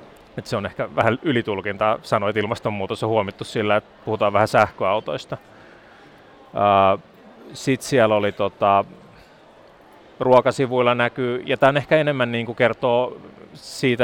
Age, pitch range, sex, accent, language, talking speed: 30-49, 105-130 Hz, male, native, Finnish, 120 wpm